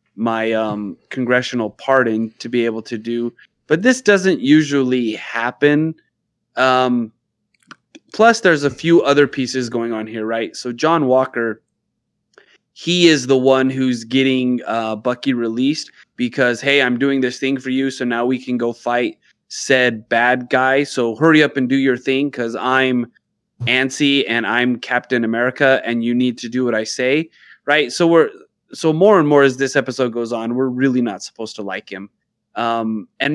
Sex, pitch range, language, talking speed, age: male, 120-145 Hz, English, 175 wpm, 20-39